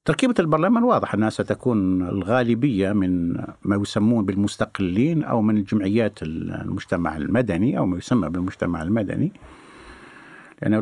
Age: 60-79